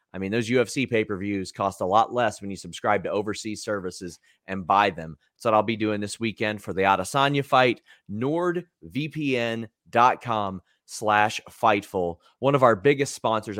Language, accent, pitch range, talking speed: English, American, 100-130 Hz, 165 wpm